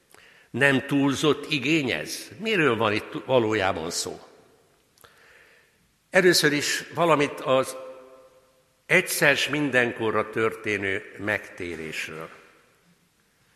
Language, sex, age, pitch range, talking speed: Hungarian, male, 60-79, 120-140 Hz, 70 wpm